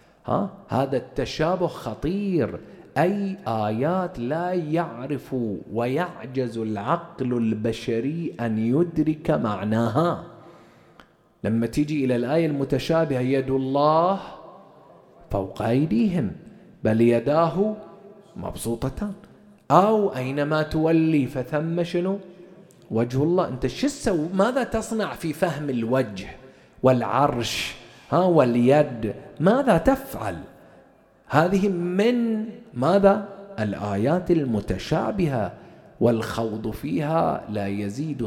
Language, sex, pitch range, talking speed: English, male, 115-185 Hz, 80 wpm